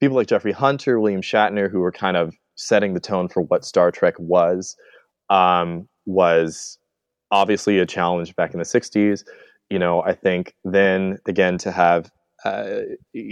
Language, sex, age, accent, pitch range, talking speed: English, male, 20-39, American, 90-105 Hz, 160 wpm